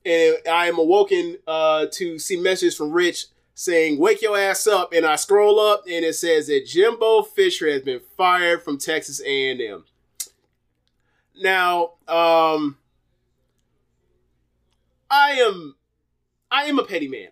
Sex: male